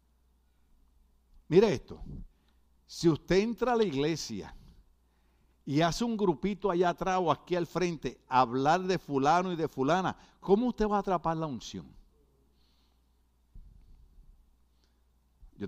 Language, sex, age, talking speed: Spanish, male, 60-79, 125 wpm